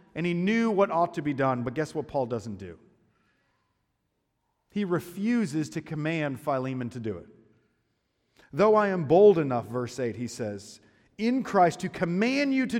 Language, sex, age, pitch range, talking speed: English, male, 40-59, 130-175 Hz, 175 wpm